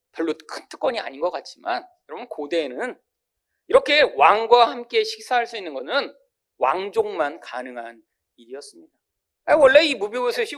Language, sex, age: Korean, male, 40-59